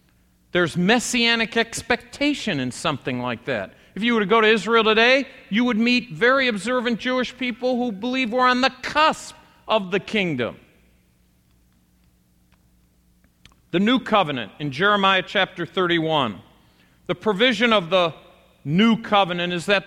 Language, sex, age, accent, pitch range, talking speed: English, male, 50-69, American, 180-240 Hz, 140 wpm